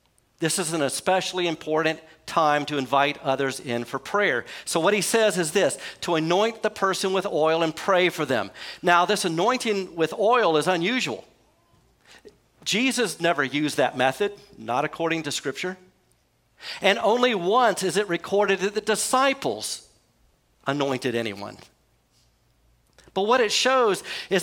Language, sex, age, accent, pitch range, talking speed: English, male, 50-69, American, 145-195 Hz, 145 wpm